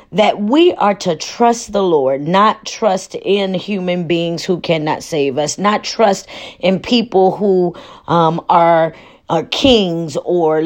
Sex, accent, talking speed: female, American, 145 wpm